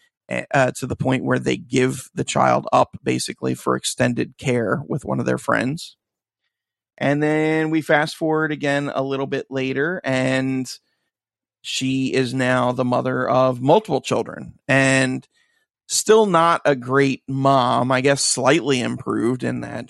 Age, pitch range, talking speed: 30-49, 130-165 Hz, 150 wpm